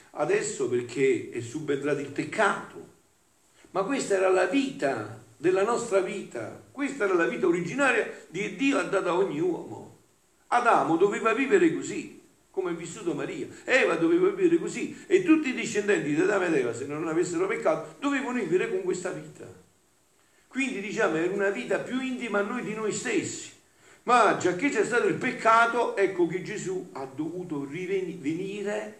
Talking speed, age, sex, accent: 165 wpm, 50-69, male, native